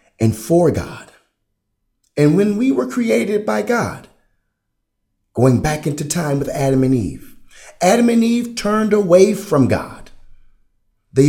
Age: 50-69